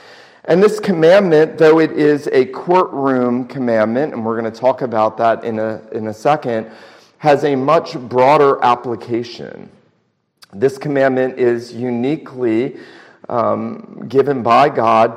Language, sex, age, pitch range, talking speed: English, male, 40-59, 110-145 Hz, 135 wpm